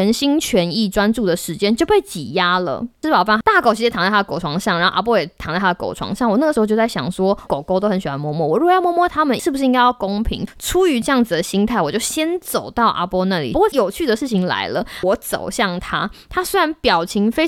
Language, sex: Chinese, female